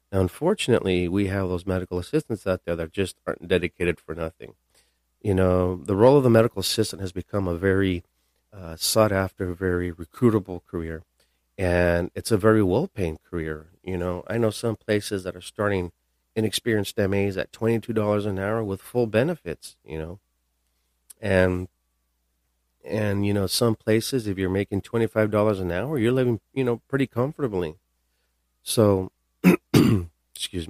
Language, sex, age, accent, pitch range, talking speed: English, male, 40-59, American, 80-100 Hz, 160 wpm